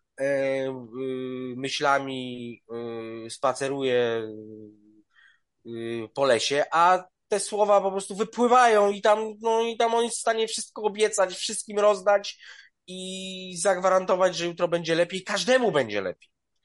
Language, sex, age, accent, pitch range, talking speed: Polish, male, 20-39, native, 125-195 Hz, 110 wpm